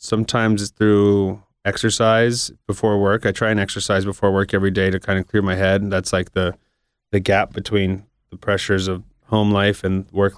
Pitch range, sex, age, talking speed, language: 90-105 Hz, male, 30-49, 195 wpm, English